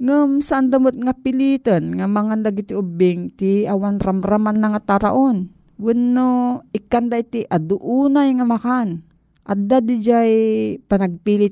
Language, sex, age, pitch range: Filipino, female, 40-59, 175-230 Hz